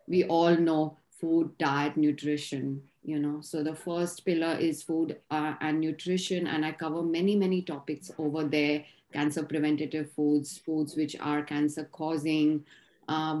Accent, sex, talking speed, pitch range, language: Indian, female, 150 wpm, 150-170 Hz, English